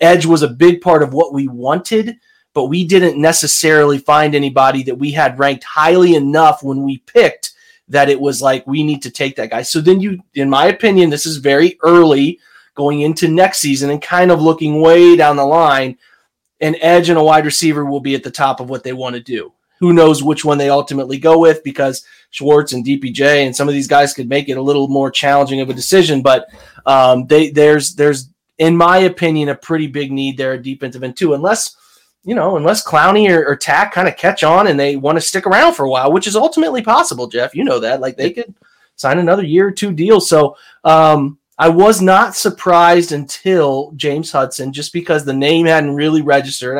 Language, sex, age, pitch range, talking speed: English, male, 30-49, 135-170 Hz, 220 wpm